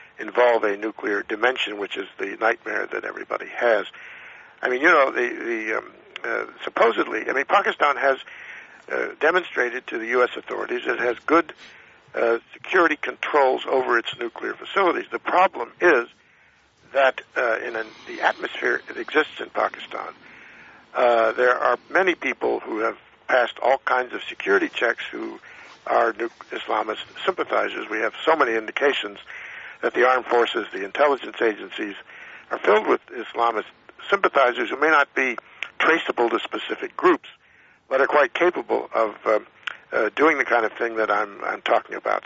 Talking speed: 160 wpm